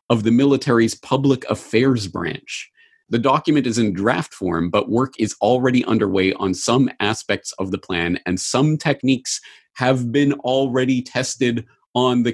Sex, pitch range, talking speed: male, 110-145 Hz, 155 wpm